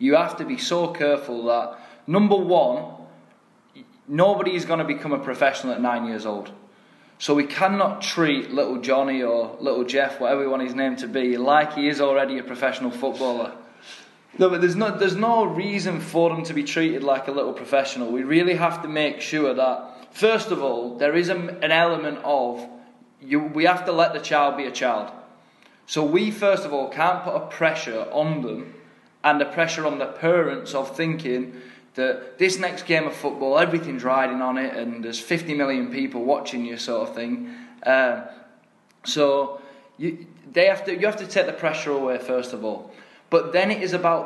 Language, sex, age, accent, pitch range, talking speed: English, male, 20-39, British, 135-170 Hz, 195 wpm